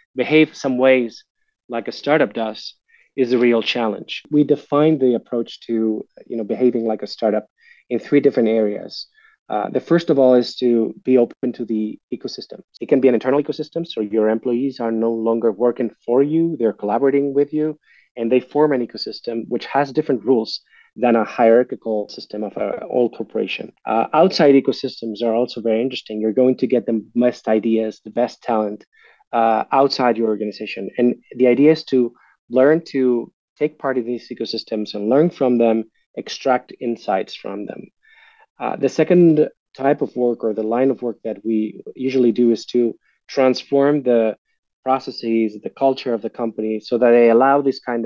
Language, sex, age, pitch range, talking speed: English, male, 30-49, 115-135 Hz, 180 wpm